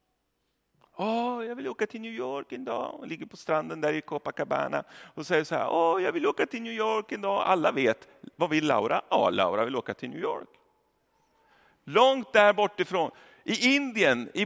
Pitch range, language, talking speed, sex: 190-240 Hz, Swedish, 210 wpm, male